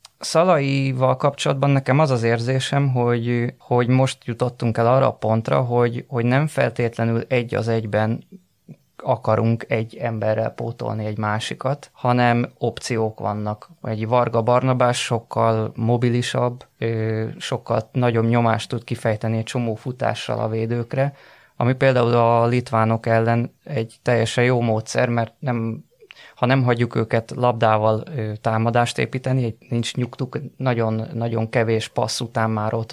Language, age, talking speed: Hungarian, 20-39, 135 wpm